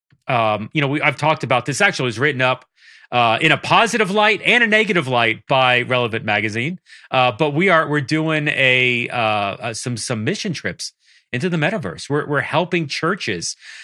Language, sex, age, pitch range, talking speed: English, male, 30-49, 115-165 Hz, 190 wpm